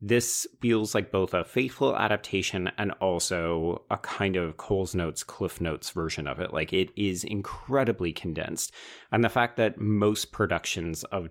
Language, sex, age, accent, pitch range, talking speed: English, male, 30-49, American, 85-110 Hz, 165 wpm